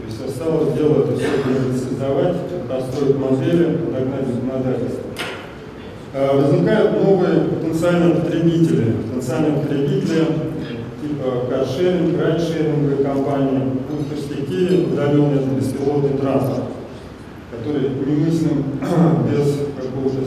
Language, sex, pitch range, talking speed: Russian, male, 130-160 Hz, 80 wpm